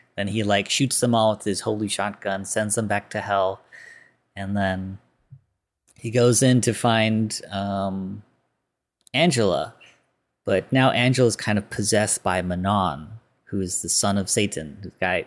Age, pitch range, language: 30-49, 100-120 Hz, English